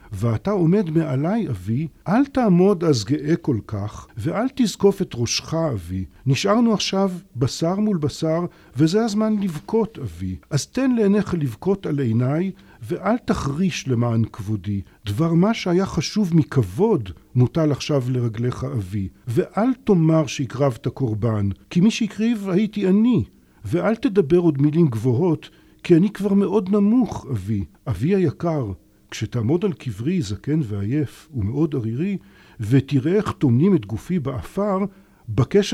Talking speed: 135 wpm